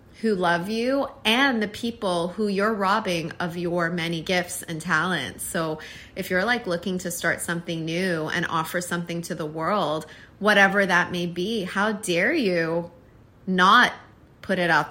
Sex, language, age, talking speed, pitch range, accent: female, English, 30-49, 165 wpm, 160-205 Hz, American